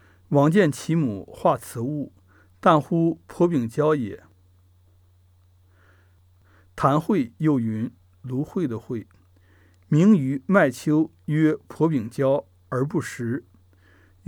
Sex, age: male, 60-79